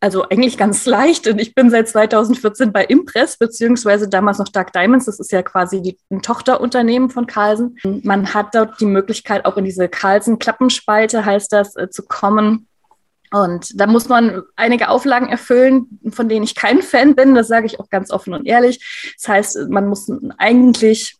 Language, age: German, 20-39